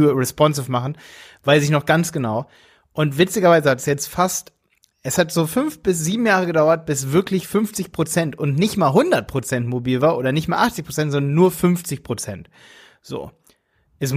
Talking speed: 180 wpm